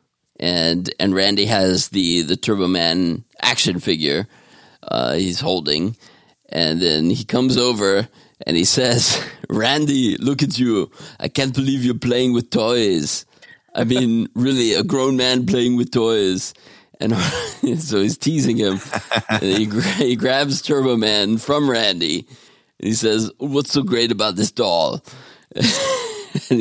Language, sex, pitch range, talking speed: English, male, 95-125 Hz, 145 wpm